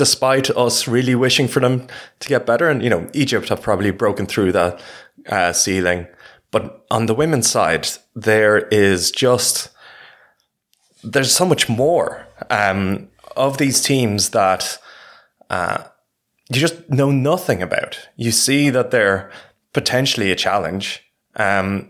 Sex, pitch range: male, 95-125 Hz